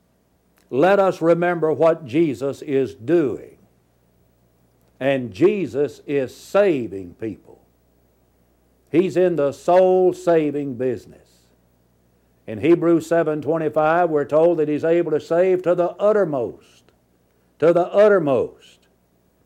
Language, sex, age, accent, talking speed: English, male, 60-79, American, 100 wpm